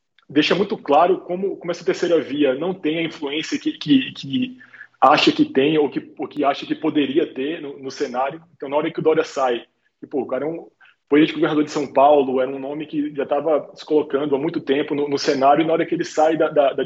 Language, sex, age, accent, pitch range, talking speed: Portuguese, male, 20-39, Brazilian, 145-195 Hz, 235 wpm